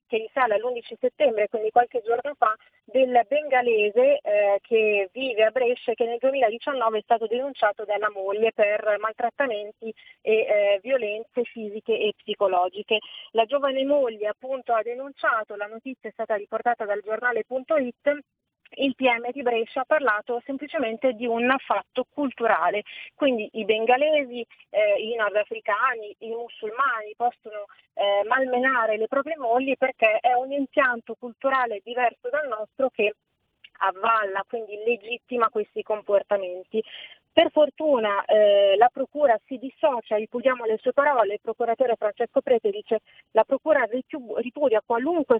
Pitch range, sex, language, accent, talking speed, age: 215-265 Hz, female, Italian, native, 140 wpm, 30-49